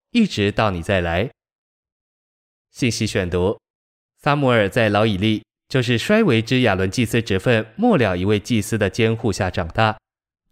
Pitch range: 105-130 Hz